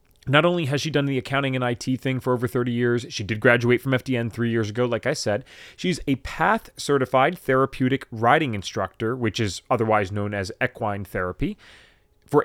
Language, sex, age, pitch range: English, male, 30-49, 105-135 Hz